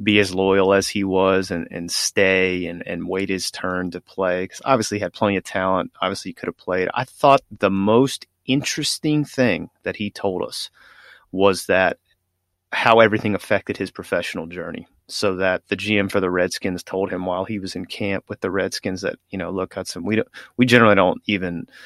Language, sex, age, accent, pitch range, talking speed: English, male, 30-49, American, 95-110 Hz, 205 wpm